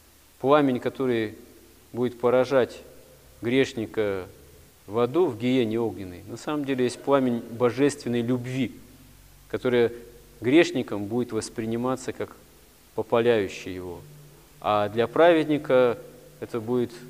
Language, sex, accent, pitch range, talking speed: Russian, male, native, 115-140 Hz, 100 wpm